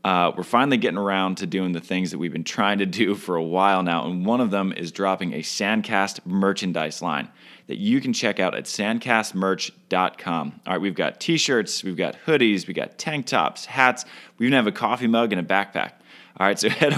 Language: English